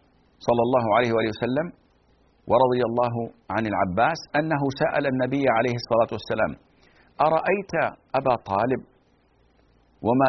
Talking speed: 110 wpm